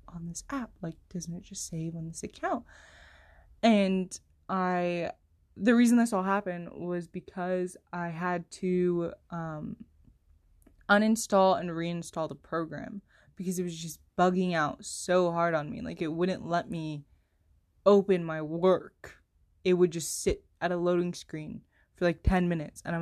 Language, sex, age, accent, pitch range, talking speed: English, female, 20-39, American, 165-220 Hz, 160 wpm